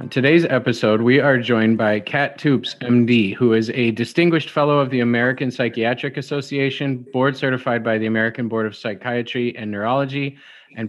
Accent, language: American, English